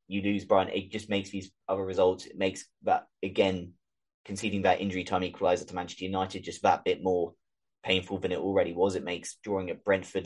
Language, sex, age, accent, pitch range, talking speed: English, male, 20-39, British, 95-120 Hz, 205 wpm